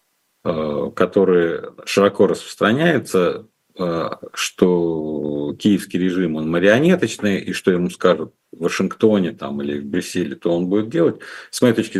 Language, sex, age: Russian, male, 50-69